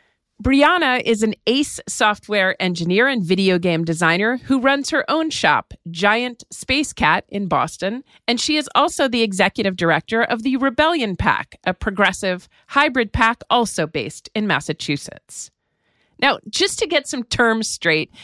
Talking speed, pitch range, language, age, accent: 150 wpm, 185-265 Hz, English, 40-59, American